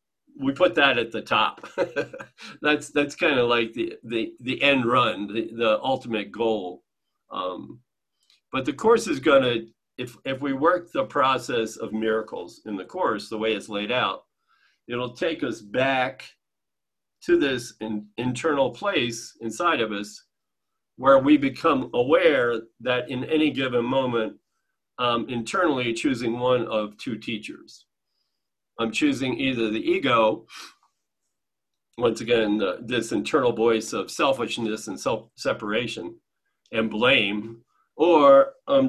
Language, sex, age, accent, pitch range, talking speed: English, male, 50-69, American, 115-155 Hz, 135 wpm